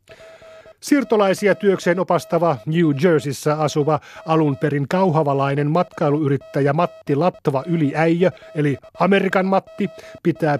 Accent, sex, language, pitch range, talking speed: native, male, Finnish, 145-190 Hz, 90 wpm